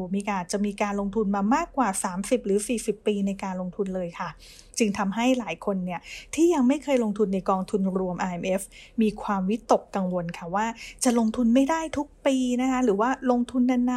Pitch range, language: 195-260 Hz, English